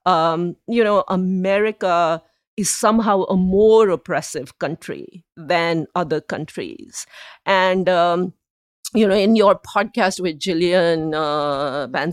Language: English